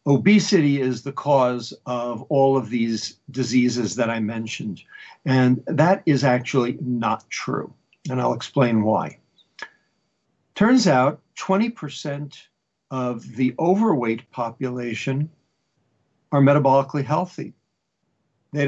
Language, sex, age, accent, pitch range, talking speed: English, male, 50-69, American, 125-160 Hz, 105 wpm